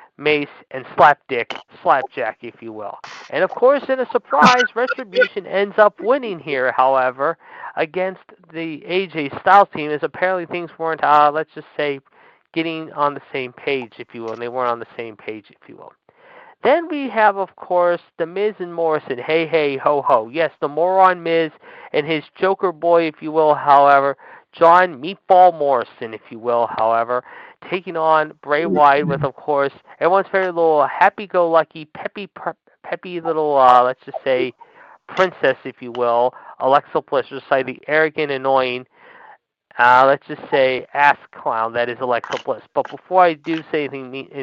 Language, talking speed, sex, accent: English, 175 wpm, male, American